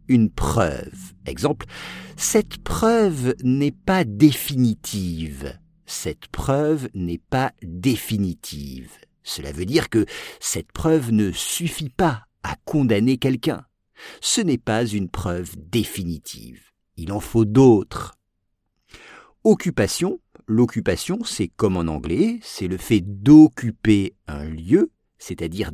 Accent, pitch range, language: French, 100-160 Hz, English